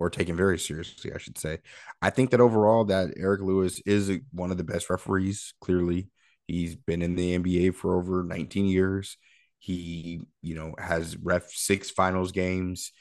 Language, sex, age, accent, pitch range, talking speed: English, male, 30-49, American, 85-95 Hz, 175 wpm